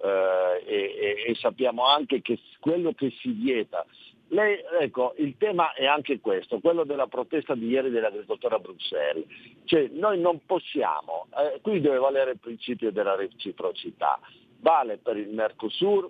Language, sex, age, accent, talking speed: Italian, male, 50-69, native, 150 wpm